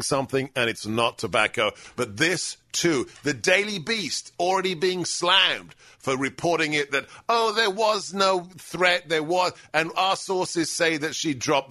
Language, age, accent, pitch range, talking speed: English, 50-69, British, 110-140 Hz, 165 wpm